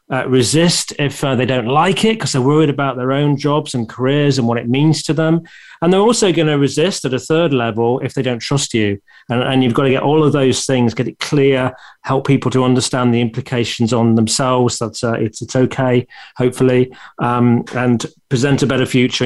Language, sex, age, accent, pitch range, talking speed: English, male, 40-59, British, 120-145 Hz, 220 wpm